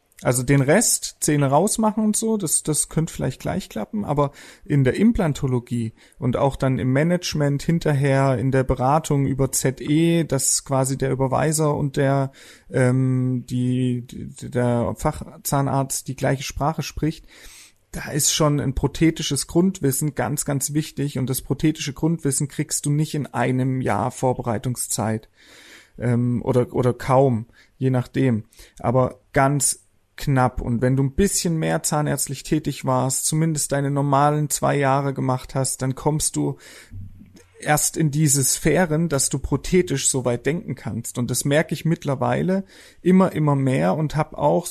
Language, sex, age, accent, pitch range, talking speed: German, male, 30-49, German, 130-155 Hz, 155 wpm